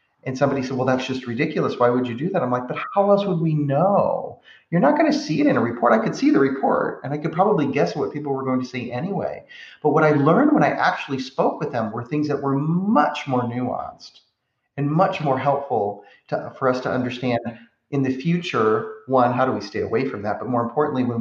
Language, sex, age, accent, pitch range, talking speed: English, male, 30-49, American, 115-140 Hz, 245 wpm